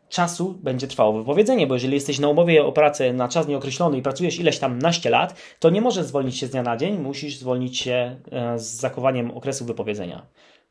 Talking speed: 200 wpm